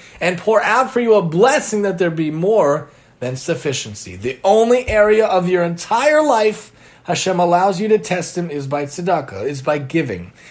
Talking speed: 185 wpm